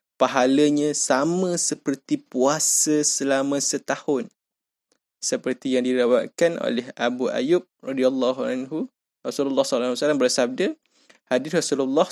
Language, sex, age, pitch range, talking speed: Malay, male, 20-39, 130-165 Hz, 100 wpm